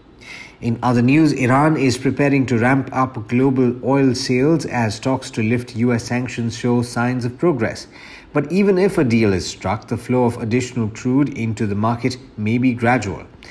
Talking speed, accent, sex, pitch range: 180 wpm, Indian, male, 115-135 Hz